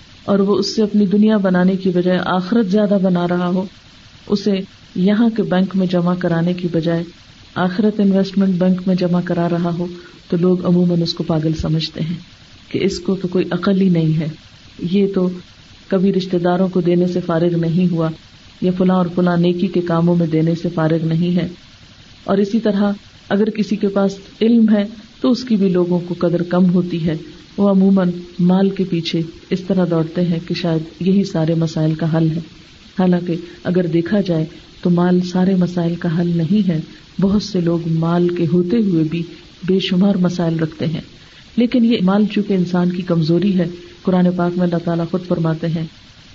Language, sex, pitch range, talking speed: Urdu, female, 170-195 Hz, 195 wpm